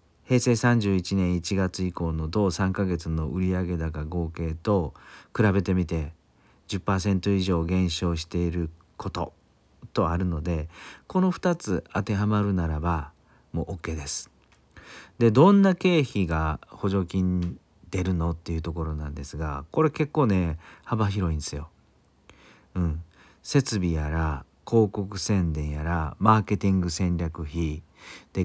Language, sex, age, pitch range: Japanese, male, 40-59, 80-105 Hz